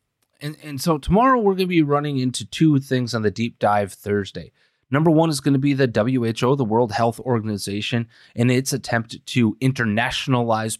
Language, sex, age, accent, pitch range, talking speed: English, male, 30-49, American, 115-140 Hz, 190 wpm